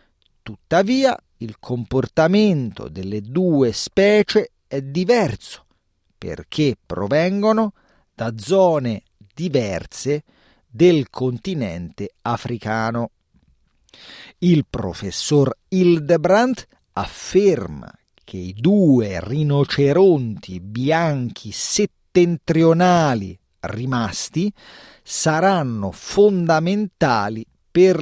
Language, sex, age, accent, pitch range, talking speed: Italian, male, 40-59, native, 110-160 Hz, 65 wpm